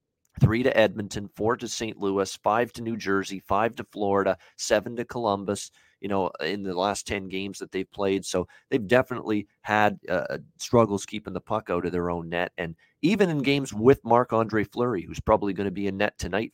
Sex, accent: male, American